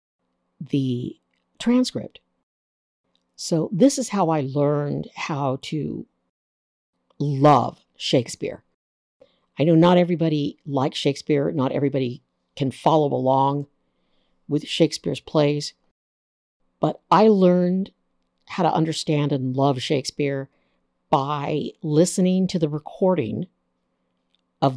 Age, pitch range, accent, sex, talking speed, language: 60-79, 125-165 Hz, American, female, 100 wpm, English